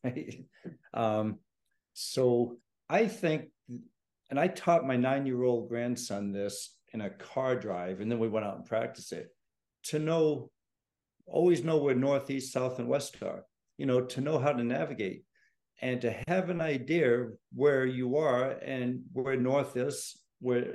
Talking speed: 155 wpm